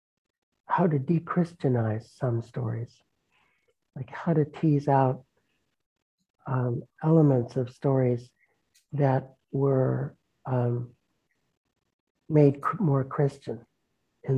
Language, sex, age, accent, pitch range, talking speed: English, male, 60-79, American, 120-145 Hz, 90 wpm